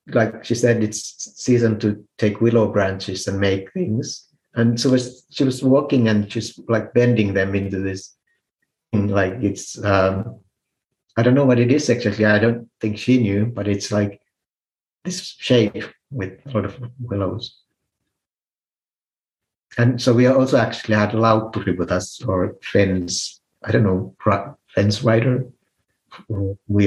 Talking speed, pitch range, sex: 155 wpm, 100-120 Hz, male